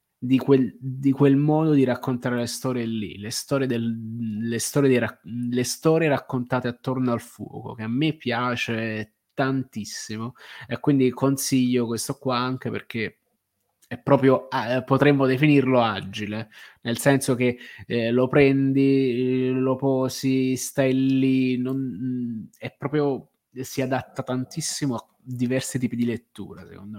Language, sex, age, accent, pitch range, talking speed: Italian, male, 20-39, native, 115-140 Hz, 140 wpm